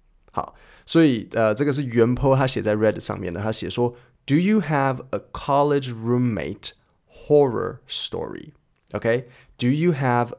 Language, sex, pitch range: Chinese, male, 105-140 Hz